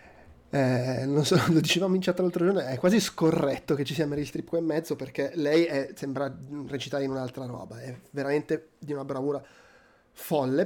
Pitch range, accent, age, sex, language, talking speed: 130-150 Hz, native, 20-39, male, Italian, 185 wpm